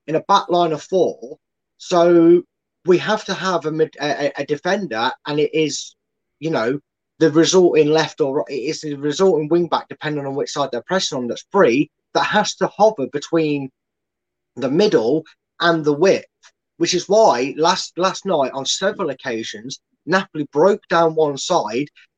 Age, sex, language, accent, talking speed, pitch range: 20-39, male, English, British, 170 wpm, 150-190 Hz